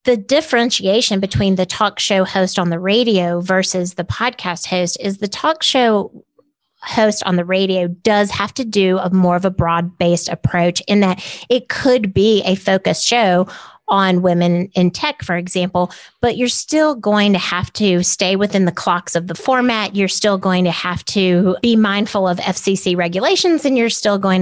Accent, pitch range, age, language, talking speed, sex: American, 180-210 Hz, 30-49, English, 185 wpm, female